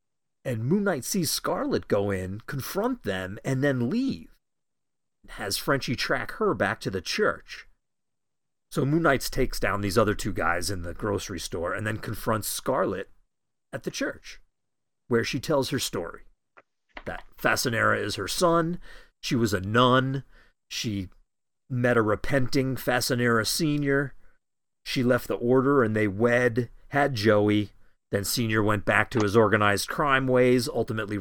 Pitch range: 100-130 Hz